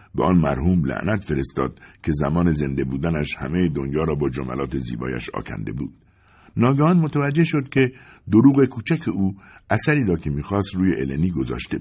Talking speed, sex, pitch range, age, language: 160 wpm, male, 85-120 Hz, 60-79, English